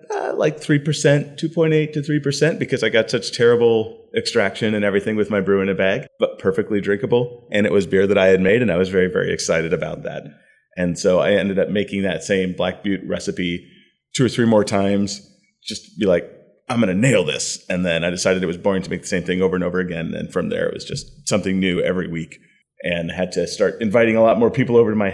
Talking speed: 240 wpm